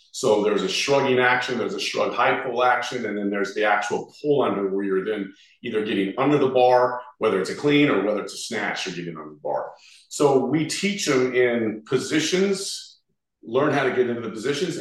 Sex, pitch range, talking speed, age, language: male, 115-180 Hz, 215 wpm, 40-59, English